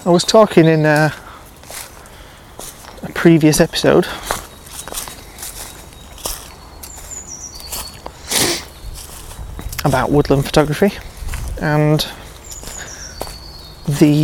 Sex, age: male, 20-39